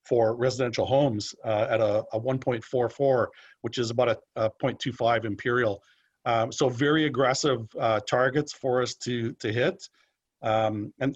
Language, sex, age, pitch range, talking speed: English, male, 40-59, 120-135 Hz, 150 wpm